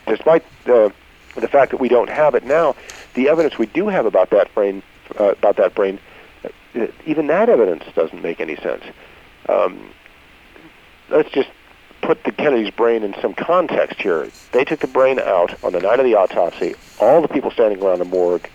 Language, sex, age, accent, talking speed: English, male, 50-69, American, 190 wpm